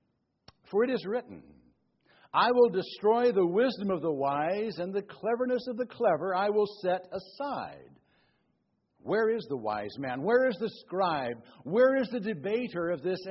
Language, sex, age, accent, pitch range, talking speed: English, male, 60-79, American, 170-240 Hz, 165 wpm